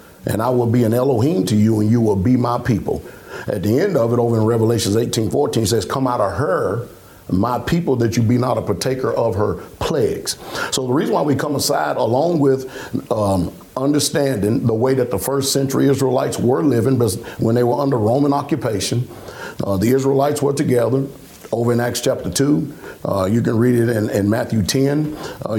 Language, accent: English, American